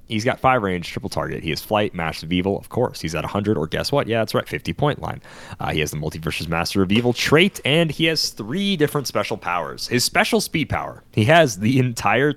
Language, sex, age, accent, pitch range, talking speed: English, male, 30-49, American, 85-125 Hz, 240 wpm